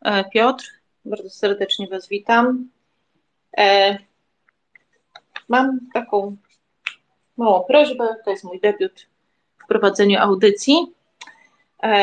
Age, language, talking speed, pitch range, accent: 30-49, Polish, 90 wpm, 205-250 Hz, native